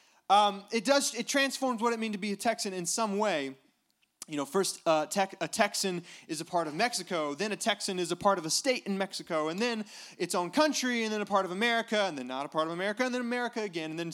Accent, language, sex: American, English, male